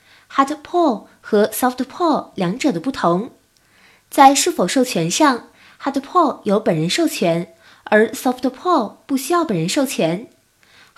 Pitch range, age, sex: 210-315 Hz, 20-39, female